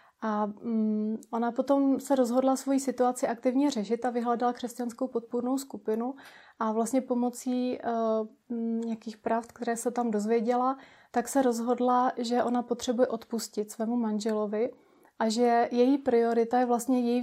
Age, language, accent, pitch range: 30-49, Czech, native, 230-250 Hz